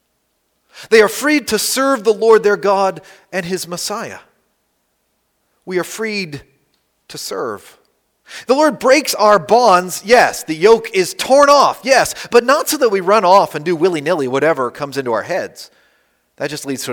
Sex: male